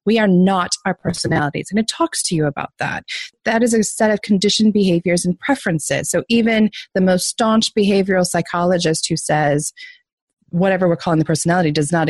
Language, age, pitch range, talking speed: English, 20-39, 175-245 Hz, 185 wpm